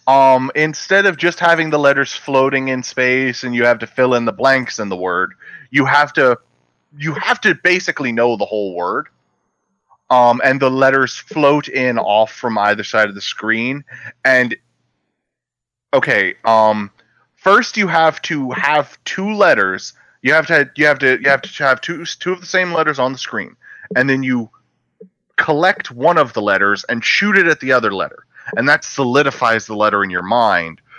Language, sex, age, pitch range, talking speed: English, male, 30-49, 115-155 Hz, 190 wpm